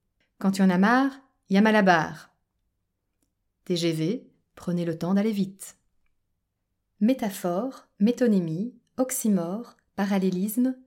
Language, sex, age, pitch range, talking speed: French, female, 30-49, 175-225 Hz, 110 wpm